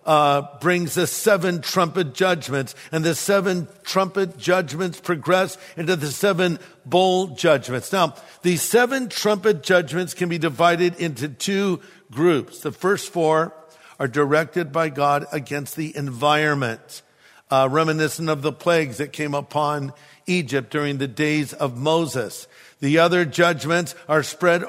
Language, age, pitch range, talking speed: English, 50-69, 150-185 Hz, 140 wpm